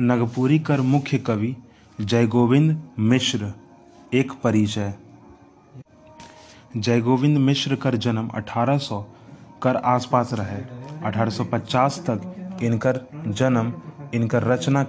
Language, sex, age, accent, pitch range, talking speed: Hindi, male, 20-39, native, 110-130 Hz, 90 wpm